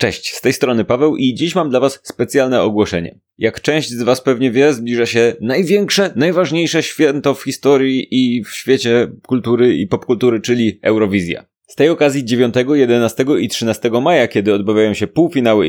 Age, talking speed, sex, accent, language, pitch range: 20-39, 170 wpm, male, native, Polish, 115-145 Hz